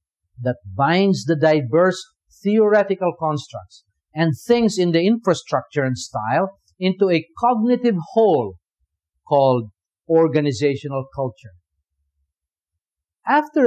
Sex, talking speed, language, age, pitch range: male, 90 wpm, English, 50-69, 125-215 Hz